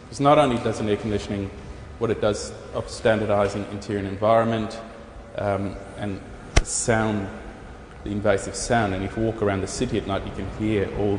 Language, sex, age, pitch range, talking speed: English, male, 20-39, 100-115 Hz, 180 wpm